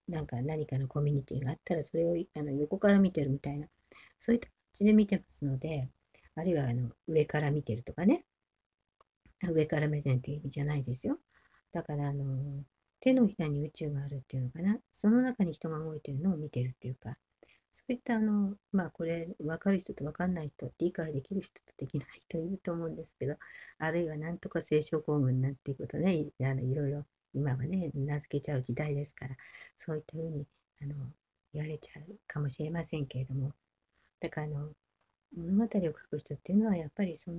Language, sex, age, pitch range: Japanese, female, 50-69, 140-180 Hz